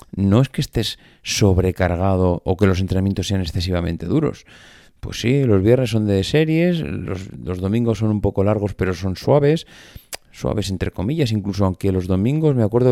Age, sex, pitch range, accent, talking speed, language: 30-49, male, 90-115 Hz, Spanish, 175 wpm, Spanish